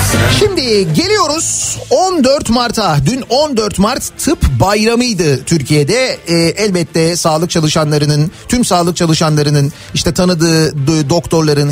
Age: 40-59